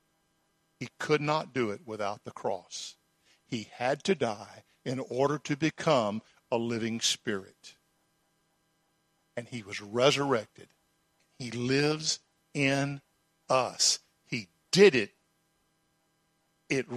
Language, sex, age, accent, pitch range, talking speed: English, male, 50-69, American, 130-160 Hz, 110 wpm